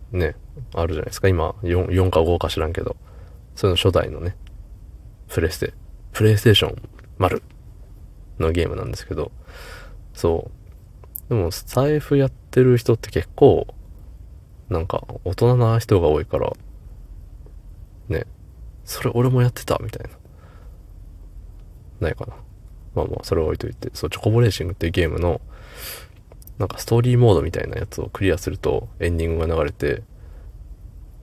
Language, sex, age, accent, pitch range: Japanese, male, 20-39, native, 85-115 Hz